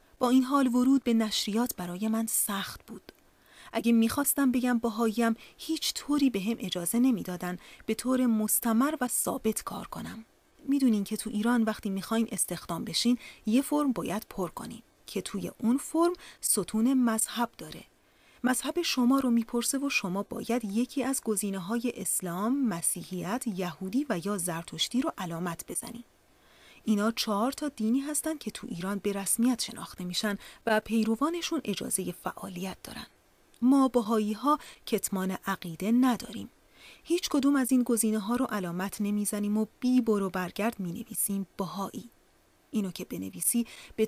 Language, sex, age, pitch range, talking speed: Persian, female, 30-49, 205-255 Hz, 150 wpm